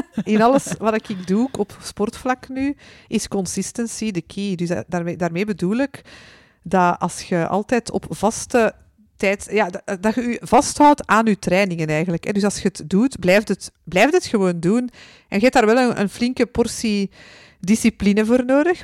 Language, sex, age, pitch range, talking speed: Dutch, female, 50-69, 185-235 Hz, 170 wpm